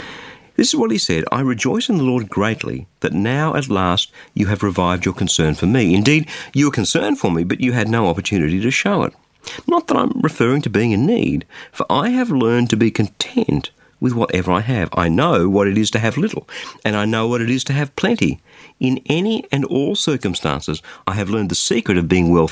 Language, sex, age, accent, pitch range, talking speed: English, male, 50-69, Australian, 90-130 Hz, 225 wpm